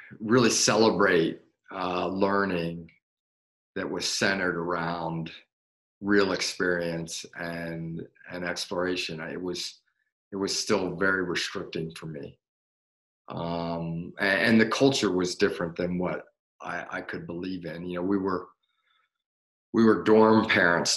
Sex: male